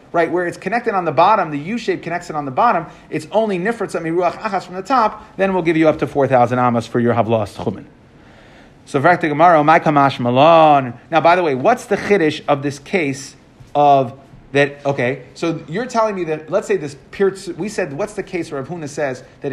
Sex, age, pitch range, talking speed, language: male, 30-49, 145-215 Hz, 220 wpm, English